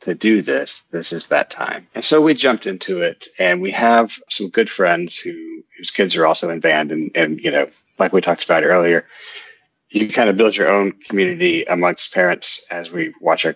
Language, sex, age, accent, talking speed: English, male, 40-59, American, 215 wpm